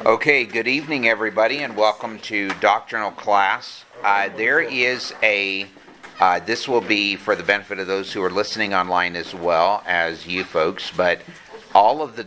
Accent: American